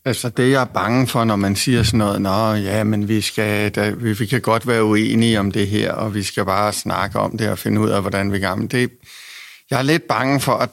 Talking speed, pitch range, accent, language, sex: 265 wpm, 115-145 Hz, native, Danish, male